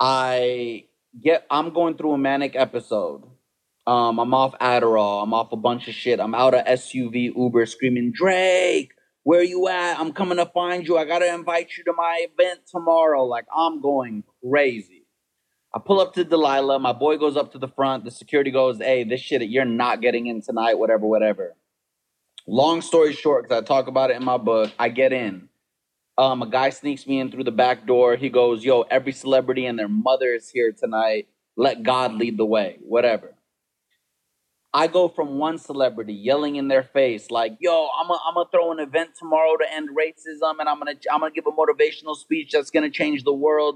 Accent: American